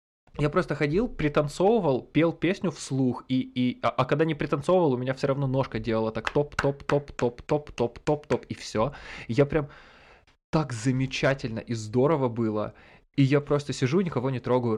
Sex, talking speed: male, 185 wpm